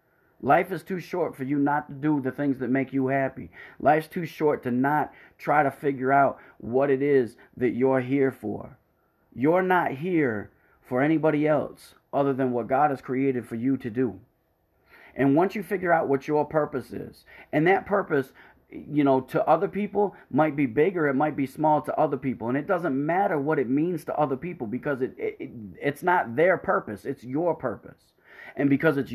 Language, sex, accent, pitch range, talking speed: English, male, American, 125-145 Hz, 200 wpm